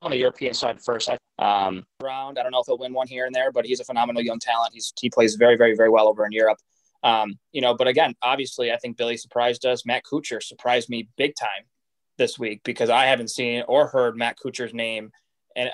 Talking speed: 235 wpm